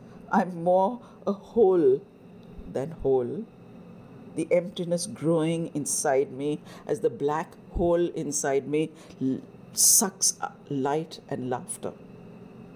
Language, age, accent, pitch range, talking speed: English, 60-79, Indian, 155-205 Hz, 100 wpm